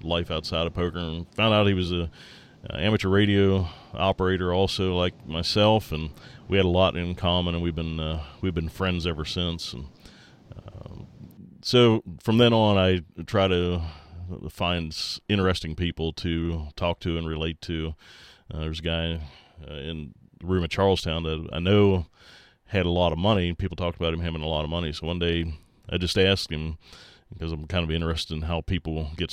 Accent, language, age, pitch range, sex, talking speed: American, English, 30-49, 80-95 Hz, male, 195 wpm